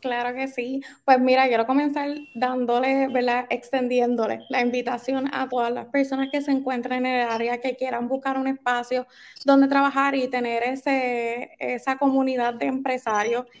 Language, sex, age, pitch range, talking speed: Spanish, female, 20-39, 245-275 Hz, 160 wpm